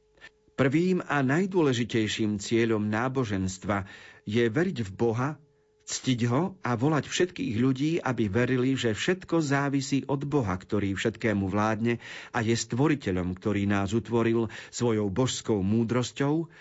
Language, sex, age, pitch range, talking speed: Slovak, male, 50-69, 105-140 Hz, 125 wpm